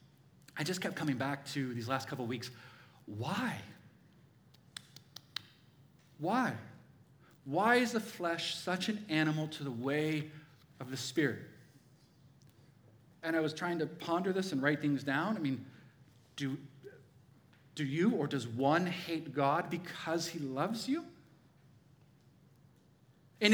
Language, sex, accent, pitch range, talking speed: English, male, American, 135-175 Hz, 130 wpm